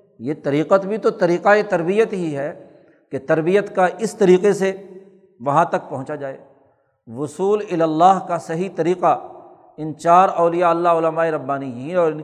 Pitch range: 155-195 Hz